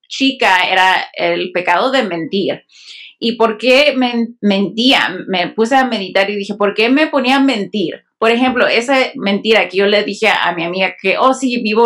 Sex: female